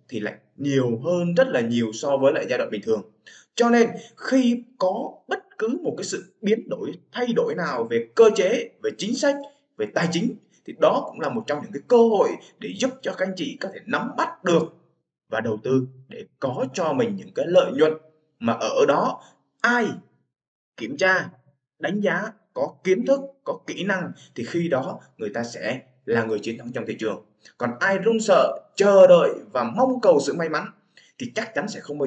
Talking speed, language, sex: 215 wpm, Vietnamese, male